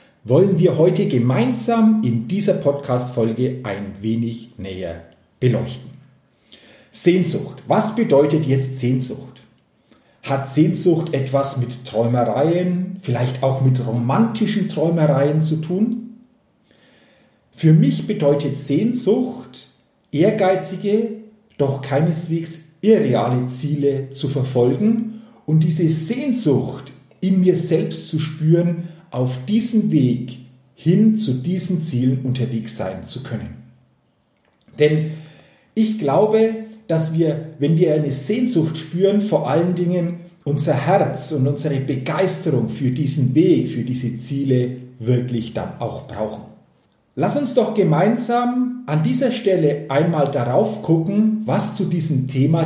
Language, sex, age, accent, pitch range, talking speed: German, male, 40-59, German, 130-185 Hz, 115 wpm